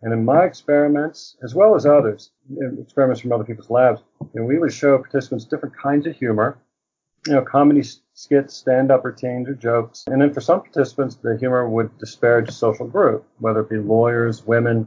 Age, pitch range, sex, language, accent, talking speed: 40-59, 110-135 Hz, male, English, American, 195 wpm